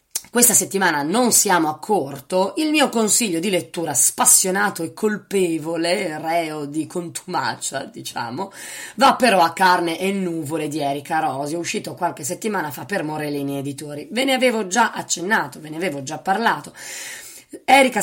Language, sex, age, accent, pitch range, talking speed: Italian, female, 20-39, native, 160-215 Hz, 155 wpm